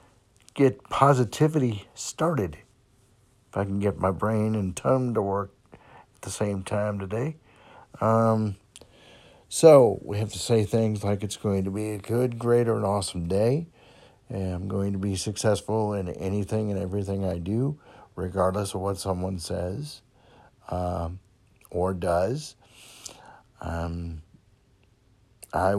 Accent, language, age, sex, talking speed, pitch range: American, English, 60-79, male, 135 wpm, 95-115 Hz